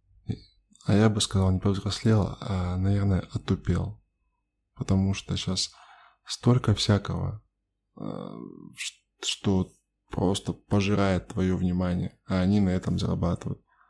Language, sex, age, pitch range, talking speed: Russian, male, 20-39, 95-110 Hz, 105 wpm